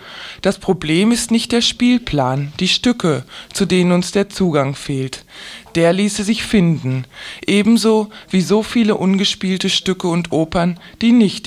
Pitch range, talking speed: 165-200 Hz, 145 wpm